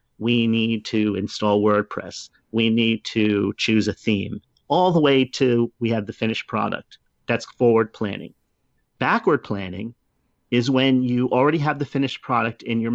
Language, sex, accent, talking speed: English, male, American, 160 wpm